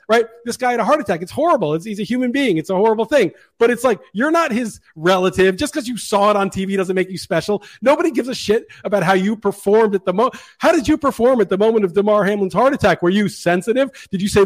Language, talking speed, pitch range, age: English, 270 wpm, 195-245 Hz, 40-59